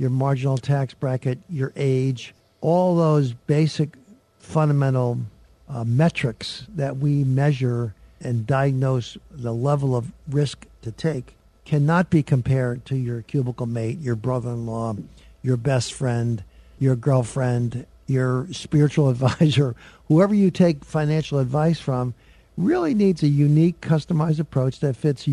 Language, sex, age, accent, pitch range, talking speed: English, male, 50-69, American, 125-150 Hz, 130 wpm